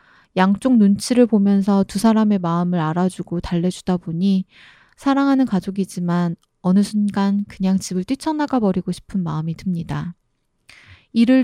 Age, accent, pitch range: 20-39, native, 180-230 Hz